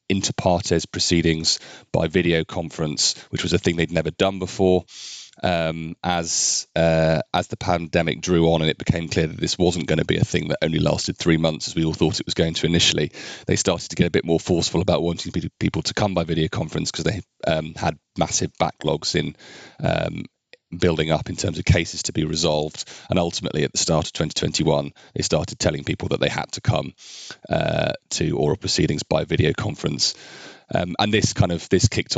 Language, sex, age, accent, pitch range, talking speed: English, male, 30-49, British, 80-90 Hz, 205 wpm